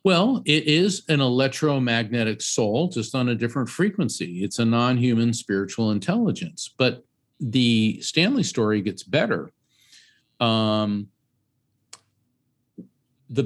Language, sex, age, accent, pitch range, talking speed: English, male, 50-69, American, 105-125 Hz, 105 wpm